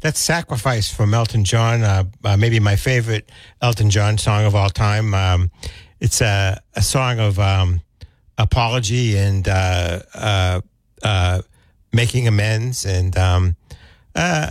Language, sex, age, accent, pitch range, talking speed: English, male, 60-79, American, 95-110 Hz, 135 wpm